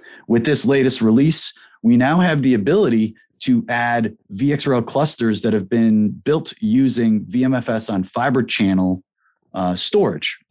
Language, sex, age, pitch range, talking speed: English, male, 30-49, 100-130 Hz, 135 wpm